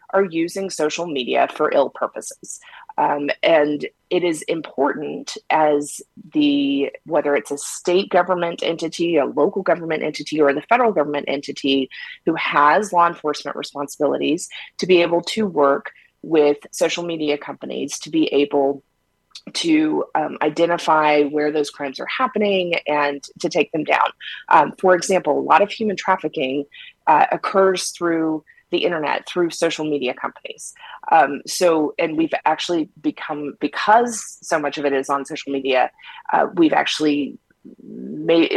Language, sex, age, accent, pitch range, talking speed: English, female, 20-39, American, 145-180 Hz, 150 wpm